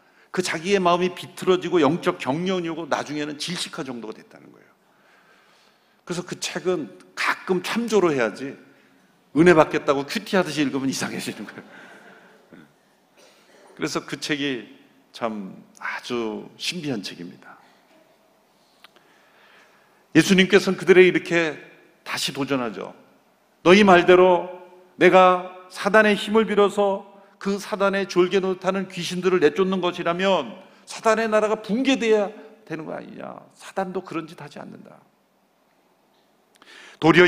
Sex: male